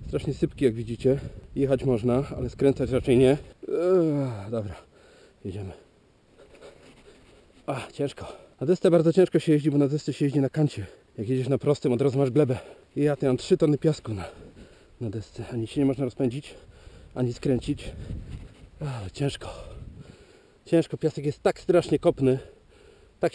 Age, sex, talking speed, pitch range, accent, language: 40-59, male, 160 wpm, 125-165 Hz, native, Polish